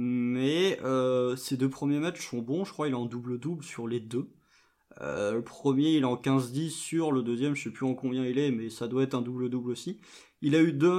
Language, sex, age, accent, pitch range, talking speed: French, male, 20-39, French, 125-155 Hz, 250 wpm